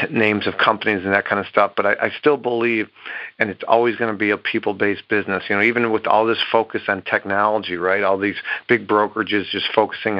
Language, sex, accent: English, male, American